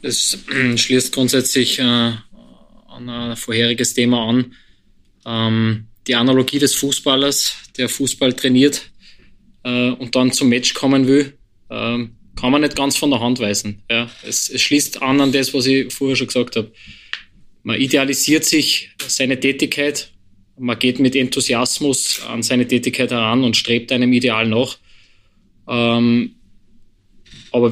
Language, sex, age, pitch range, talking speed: German, male, 20-39, 110-125 Hz, 130 wpm